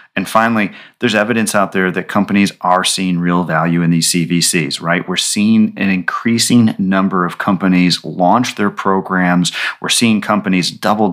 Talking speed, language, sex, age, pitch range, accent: 160 wpm, English, male, 30-49, 90-105 Hz, American